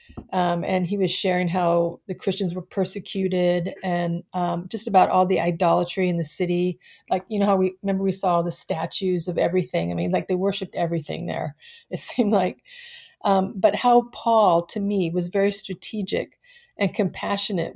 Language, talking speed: English, 180 wpm